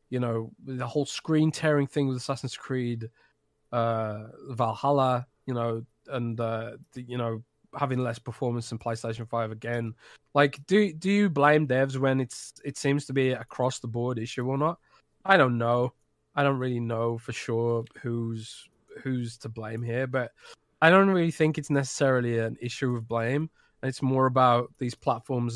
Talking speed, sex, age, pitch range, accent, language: 175 wpm, male, 20-39, 115-140 Hz, British, English